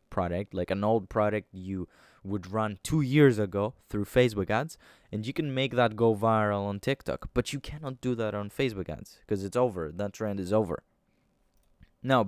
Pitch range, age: 95-125 Hz, 20-39